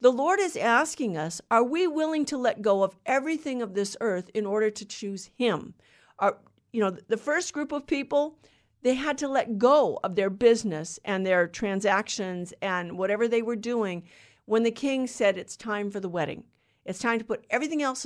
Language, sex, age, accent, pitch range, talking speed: English, female, 50-69, American, 215-280 Hz, 200 wpm